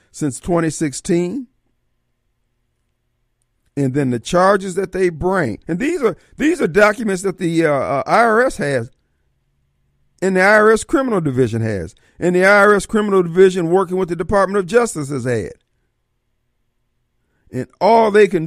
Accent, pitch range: American, 125-190 Hz